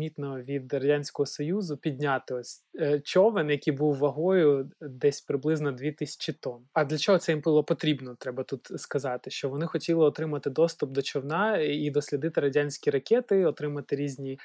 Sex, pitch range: male, 140-155 Hz